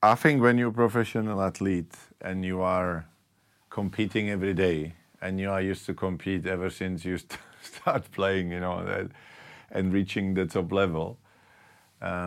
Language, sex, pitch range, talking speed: English, male, 80-95 Hz, 150 wpm